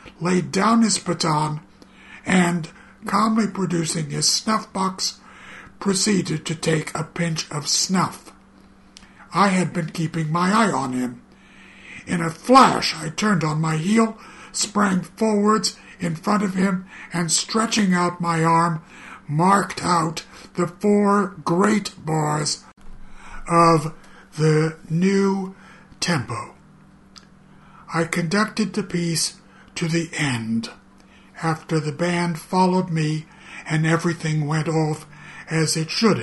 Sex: male